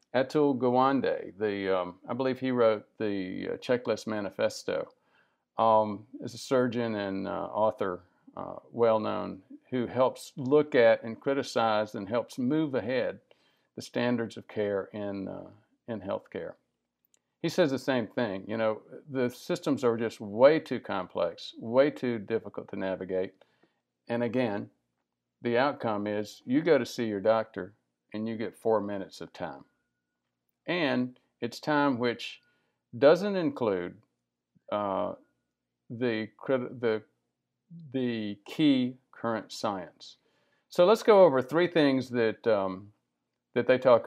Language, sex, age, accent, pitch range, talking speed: English, male, 50-69, American, 100-130 Hz, 135 wpm